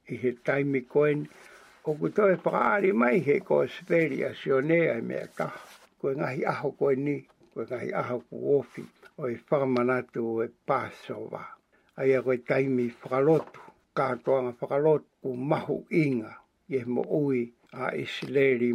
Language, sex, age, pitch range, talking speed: English, male, 60-79, 125-150 Hz, 140 wpm